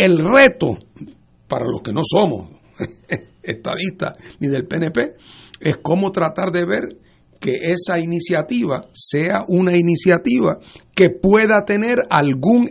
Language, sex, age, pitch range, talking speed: English, male, 60-79, 140-195 Hz, 125 wpm